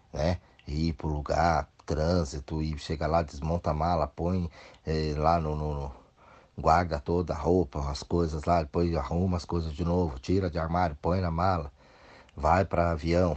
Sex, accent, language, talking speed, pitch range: male, Brazilian, Portuguese, 180 wpm, 80-125 Hz